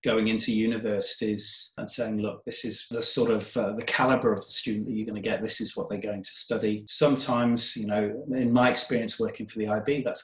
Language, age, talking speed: English, 30-49, 235 wpm